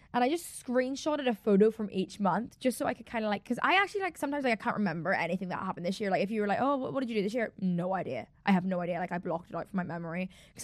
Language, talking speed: English, 320 wpm